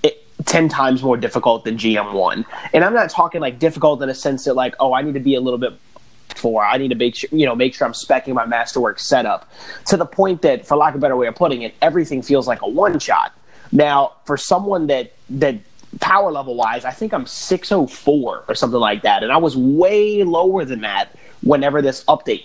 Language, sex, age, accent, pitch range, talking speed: English, male, 30-49, American, 125-165 Hz, 235 wpm